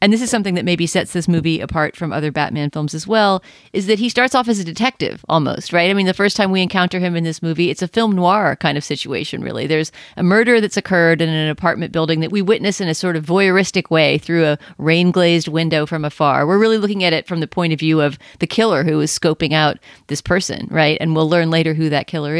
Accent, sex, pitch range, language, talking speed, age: American, female, 160-200 Hz, English, 255 wpm, 40-59